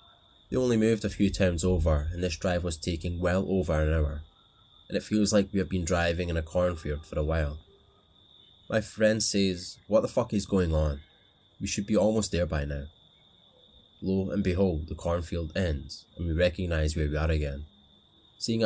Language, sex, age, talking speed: English, male, 20-39, 195 wpm